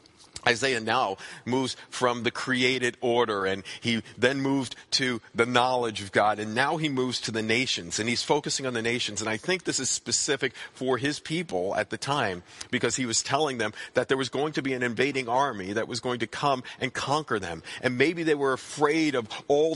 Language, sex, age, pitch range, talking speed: English, male, 40-59, 105-130 Hz, 215 wpm